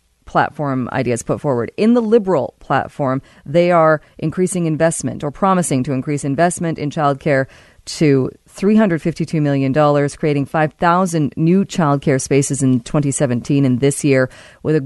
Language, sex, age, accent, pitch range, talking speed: English, female, 30-49, American, 140-180 Hz, 145 wpm